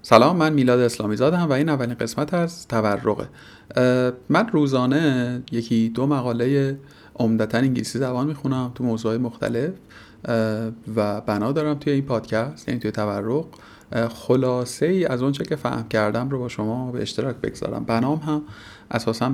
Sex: male